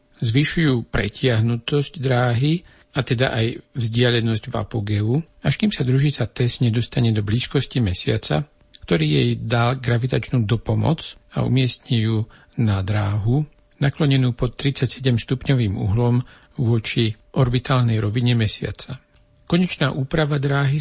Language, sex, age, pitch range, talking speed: Slovak, male, 60-79, 110-130 Hz, 110 wpm